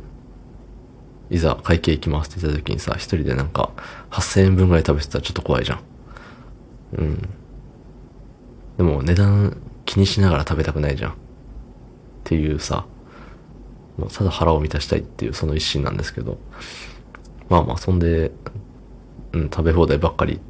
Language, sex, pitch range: Japanese, male, 80-100 Hz